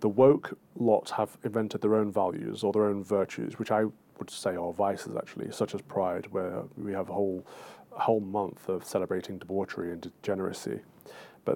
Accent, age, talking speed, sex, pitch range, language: British, 30-49, 180 wpm, male, 100-115 Hz, English